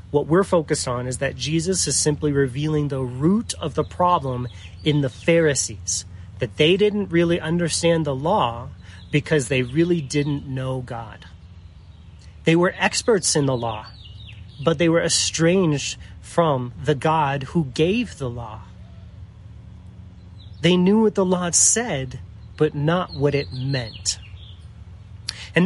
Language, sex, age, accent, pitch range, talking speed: English, male, 30-49, American, 105-160 Hz, 140 wpm